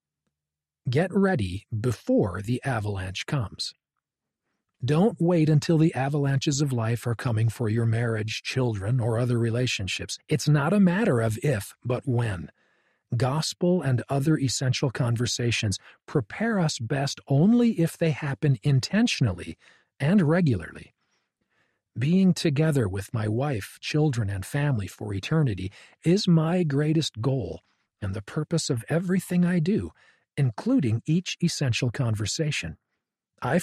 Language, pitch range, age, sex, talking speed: English, 115-165 Hz, 40-59, male, 125 wpm